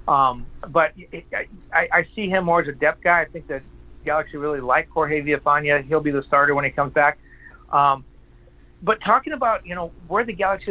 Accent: American